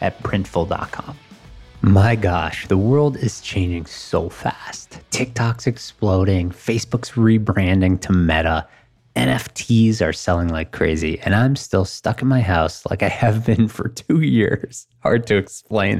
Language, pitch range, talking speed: English, 85-120 Hz, 145 wpm